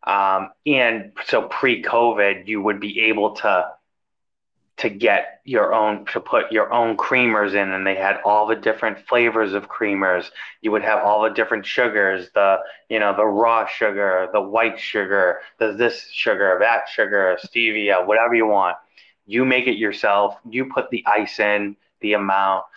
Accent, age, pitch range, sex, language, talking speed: American, 20-39, 105-120 Hz, male, English, 170 wpm